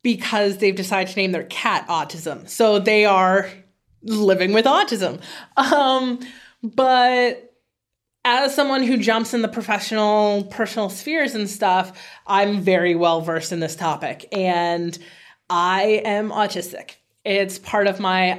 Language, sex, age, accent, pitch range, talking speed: English, female, 20-39, American, 180-225 Hz, 135 wpm